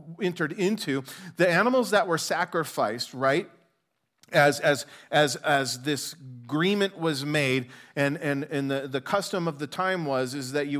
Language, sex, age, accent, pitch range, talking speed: English, male, 40-59, American, 135-170 Hz, 160 wpm